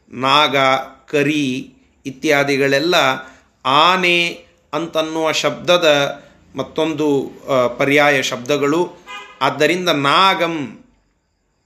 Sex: male